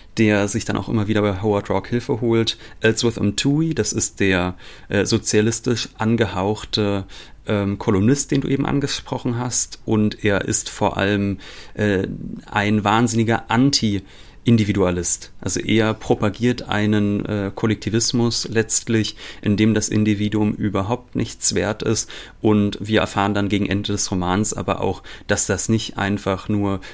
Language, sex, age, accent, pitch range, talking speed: German, male, 30-49, German, 100-115 Hz, 140 wpm